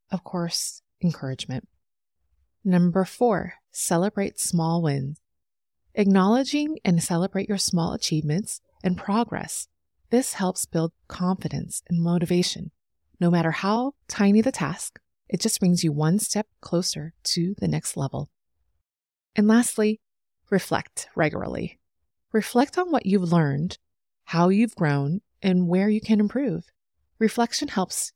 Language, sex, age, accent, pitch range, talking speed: English, female, 30-49, American, 160-220 Hz, 125 wpm